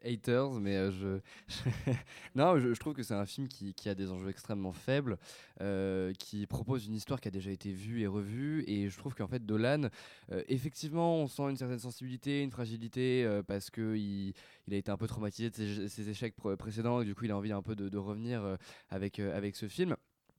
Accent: French